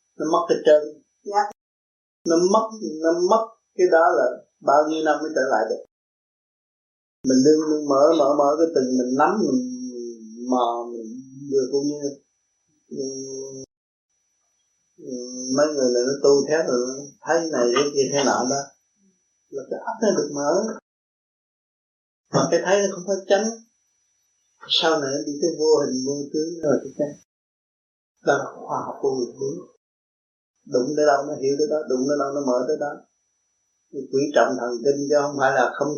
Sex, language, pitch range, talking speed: male, Vietnamese, 130-165 Hz, 165 wpm